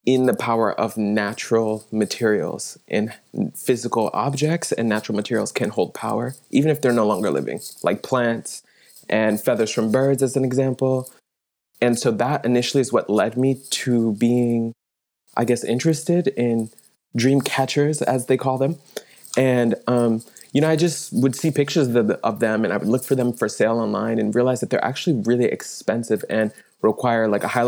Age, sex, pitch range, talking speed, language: 20-39, male, 115-130 Hz, 180 wpm, English